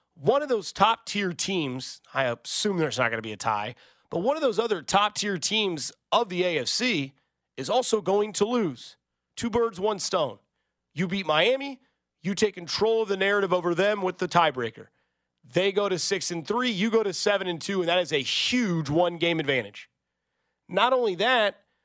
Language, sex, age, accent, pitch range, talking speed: English, male, 30-49, American, 145-205 Hz, 185 wpm